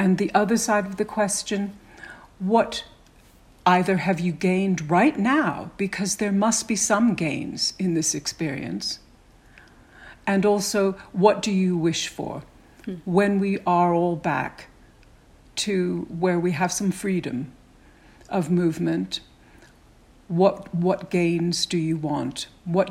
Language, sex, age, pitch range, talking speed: English, female, 60-79, 170-200 Hz, 130 wpm